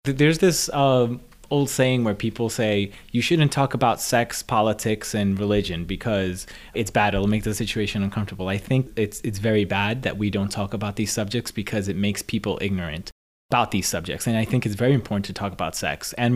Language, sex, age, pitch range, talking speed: English, male, 30-49, 100-115 Hz, 205 wpm